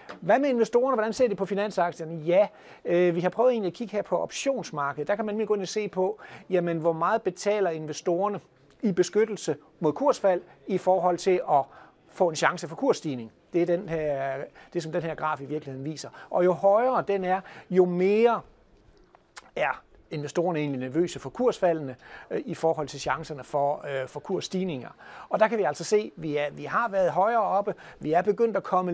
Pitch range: 155-195 Hz